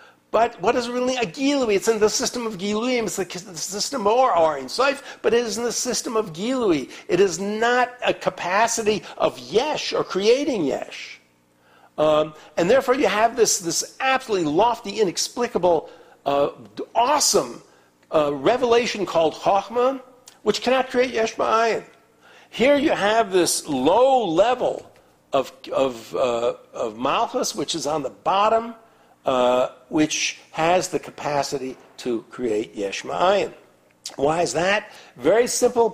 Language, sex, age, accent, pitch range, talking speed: English, male, 60-79, American, 160-245 Hz, 145 wpm